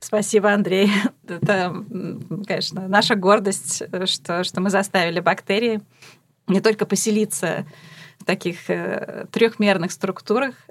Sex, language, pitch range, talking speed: female, Russian, 170-205 Hz, 100 wpm